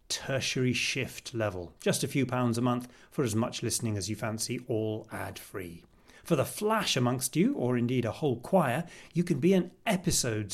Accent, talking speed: British, 195 wpm